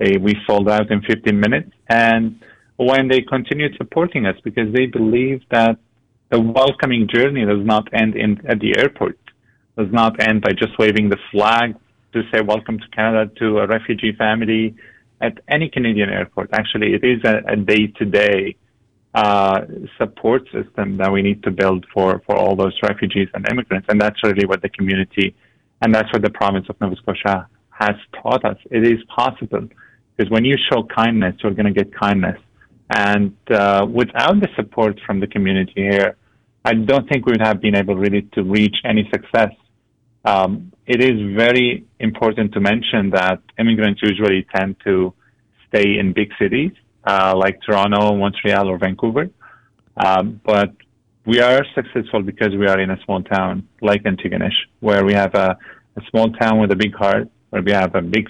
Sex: male